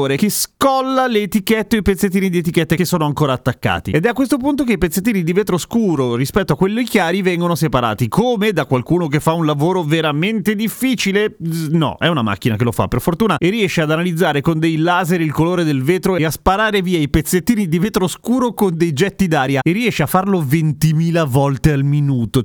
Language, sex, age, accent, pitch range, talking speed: Italian, male, 30-49, native, 125-180 Hz, 215 wpm